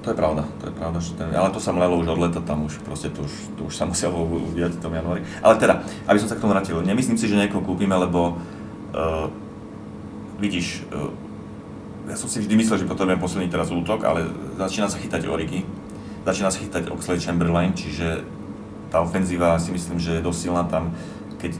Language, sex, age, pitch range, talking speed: Slovak, male, 30-49, 80-95 Hz, 205 wpm